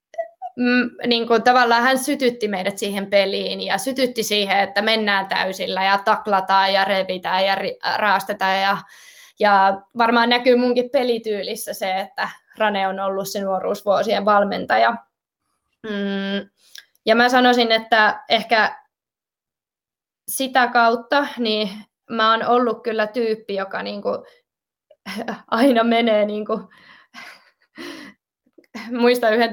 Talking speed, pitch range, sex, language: 110 wpm, 200-240 Hz, female, Finnish